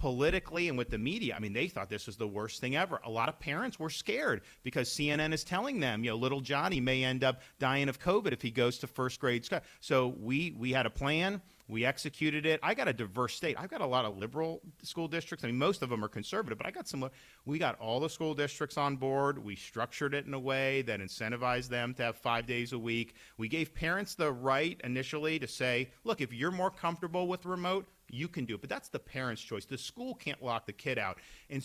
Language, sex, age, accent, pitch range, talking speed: English, male, 40-59, American, 110-145 Hz, 250 wpm